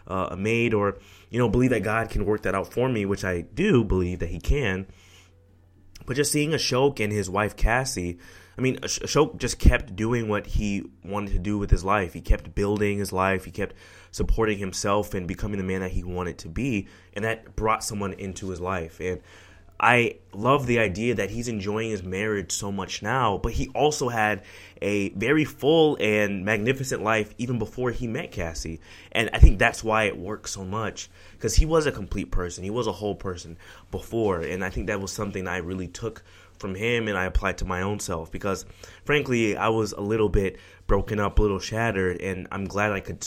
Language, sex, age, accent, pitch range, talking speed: English, male, 20-39, American, 90-110 Hz, 210 wpm